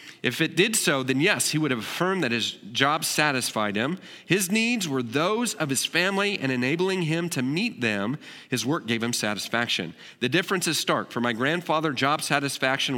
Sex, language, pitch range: male, English, 125-170 Hz